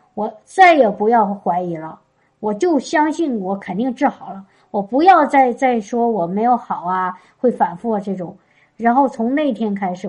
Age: 50-69